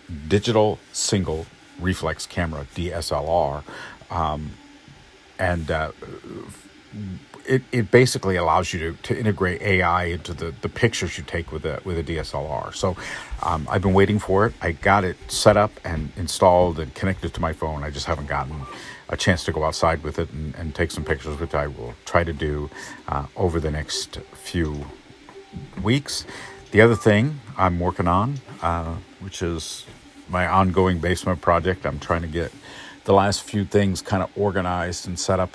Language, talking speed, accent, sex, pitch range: English, 170 wpm, American, male, 80-95 Hz